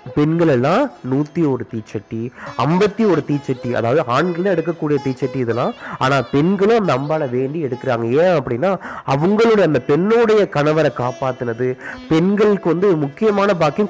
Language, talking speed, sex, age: Tamil, 125 wpm, male, 30-49